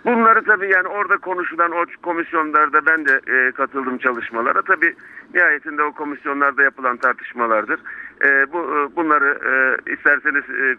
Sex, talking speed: male, 105 wpm